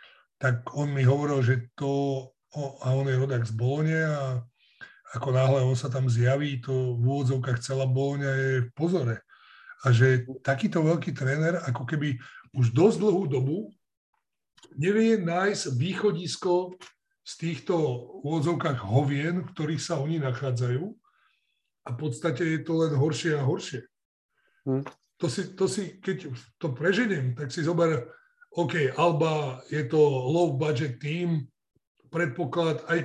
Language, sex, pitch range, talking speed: Slovak, male, 135-170 Hz, 140 wpm